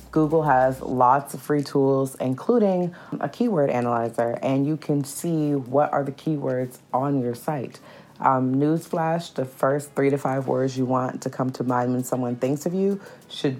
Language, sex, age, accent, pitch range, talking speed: English, female, 30-49, American, 125-150 Hz, 180 wpm